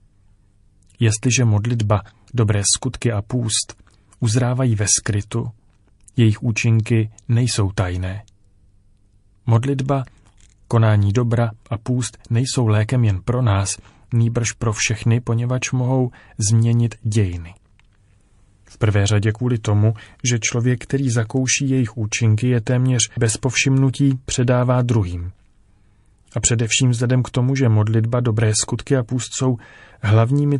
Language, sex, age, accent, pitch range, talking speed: Czech, male, 30-49, native, 105-125 Hz, 120 wpm